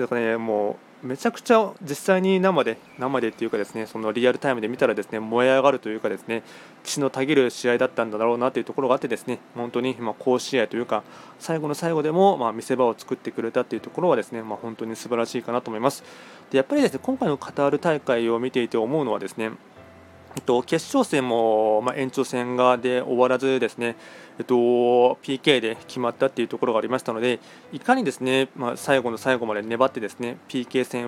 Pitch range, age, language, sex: 115-135 Hz, 20-39, Japanese, male